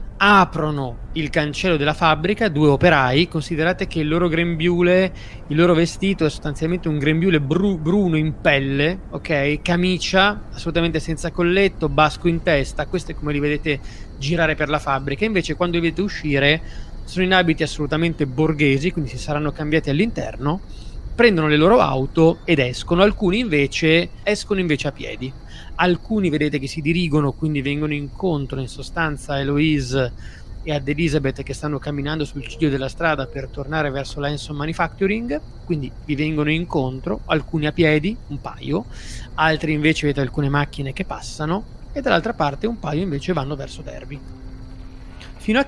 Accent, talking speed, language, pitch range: native, 160 wpm, Italian, 140-170 Hz